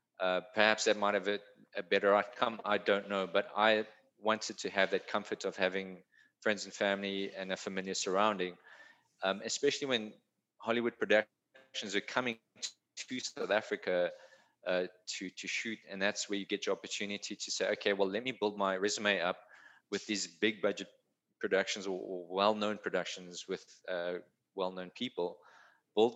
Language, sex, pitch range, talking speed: English, male, 95-115 Hz, 165 wpm